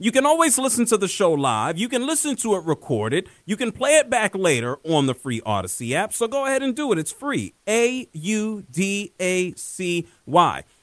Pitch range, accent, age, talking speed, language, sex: 150-210 Hz, American, 40-59, 190 wpm, English, male